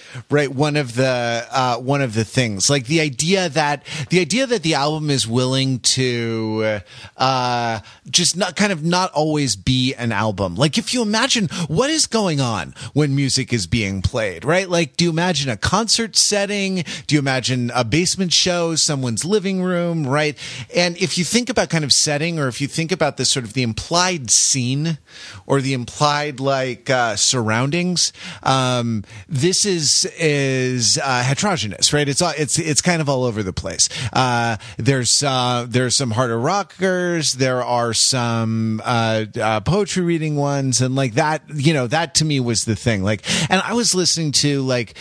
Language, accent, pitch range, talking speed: English, American, 125-165 Hz, 180 wpm